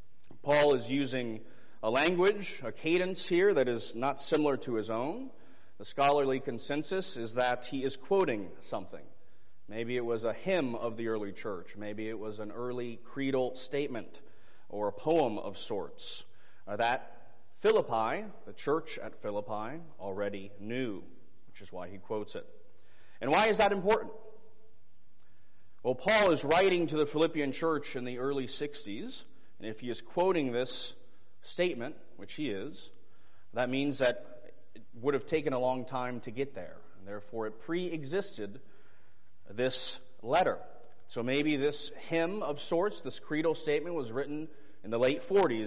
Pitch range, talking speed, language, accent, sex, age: 110-160 Hz, 155 wpm, English, American, male, 40-59